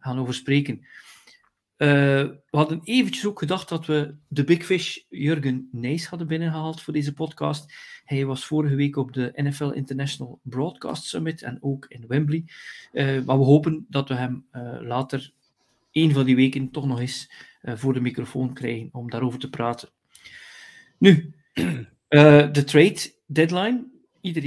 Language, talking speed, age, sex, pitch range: Dutch, 150 wpm, 40-59, male, 130-155 Hz